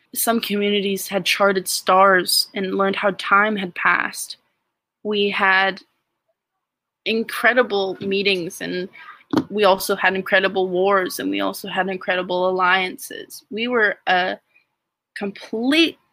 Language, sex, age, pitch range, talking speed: English, female, 20-39, 190-230 Hz, 115 wpm